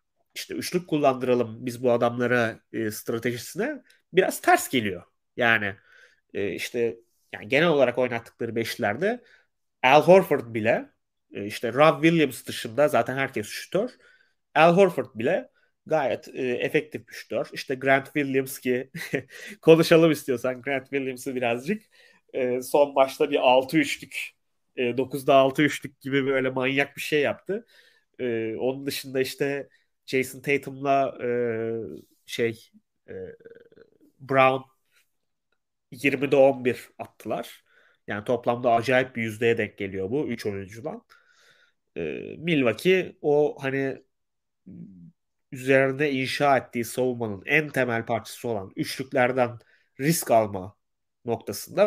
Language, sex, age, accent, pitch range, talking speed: Turkish, male, 30-49, native, 120-155 Hz, 120 wpm